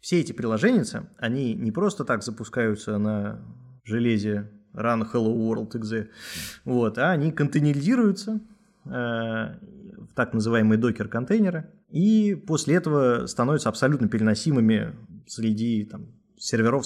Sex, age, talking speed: male, 20-39, 105 wpm